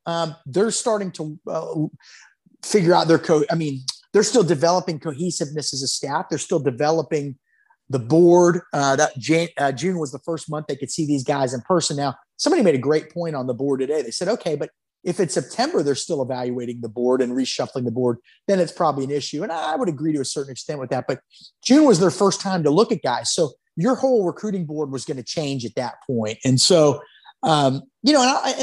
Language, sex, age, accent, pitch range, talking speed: English, male, 30-49, American, 145-190 Hz, 230 wpm